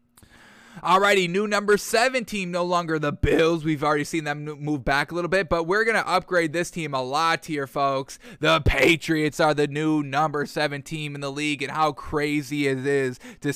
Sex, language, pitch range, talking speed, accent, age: male, English, 145-170 Hz, 205 wpm, American, 20-39